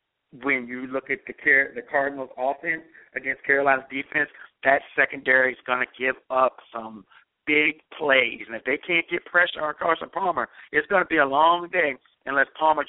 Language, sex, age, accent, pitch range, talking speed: English, male, 50-69, American, 135-175 Hz, 180 wpm